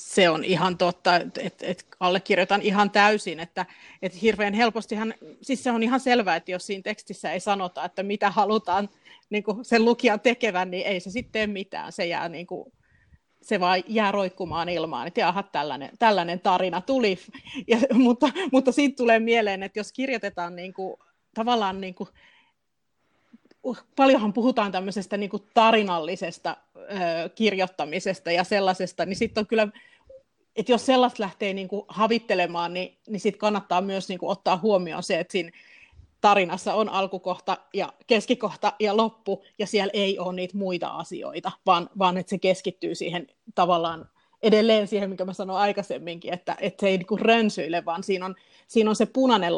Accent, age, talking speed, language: native, 30-49, 165 wpm, Finnish